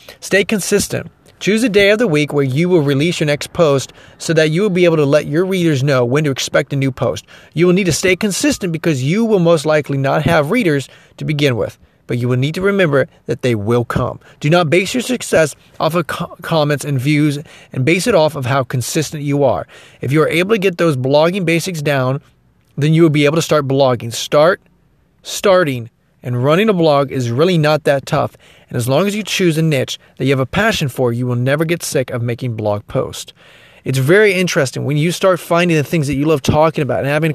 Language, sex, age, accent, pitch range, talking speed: English, male, 30-49, American, 140-175 Hz, 235 wpm